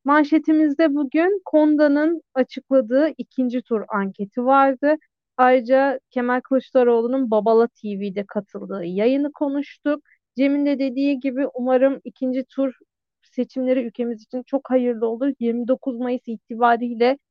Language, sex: Turkish, female